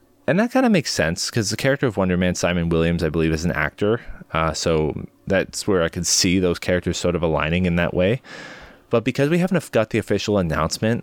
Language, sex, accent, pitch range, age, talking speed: English, male, American, 85-110 Hz, 20-39, 230 wpm